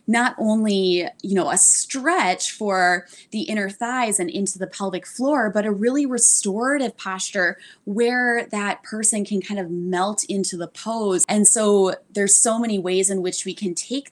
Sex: female